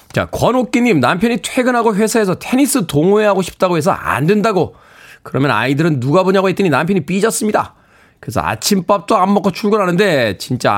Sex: male